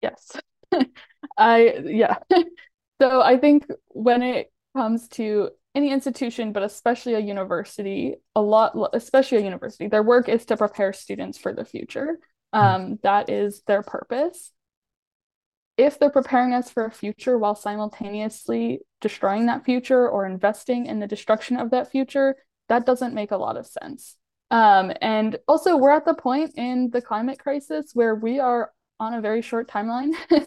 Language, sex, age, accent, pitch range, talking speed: English, female, 10-29, American, 210-260 Hz, 160 wpm